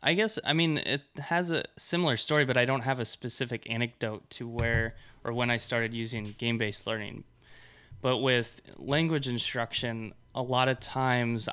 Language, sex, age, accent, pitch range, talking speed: English, male, 20-39, American, 115-130 Hz, 170 wpm